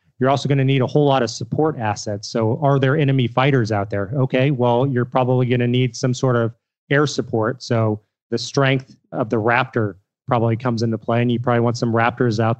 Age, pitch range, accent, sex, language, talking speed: 30-49, 115-130 Hz, American, male, English, 225 wpm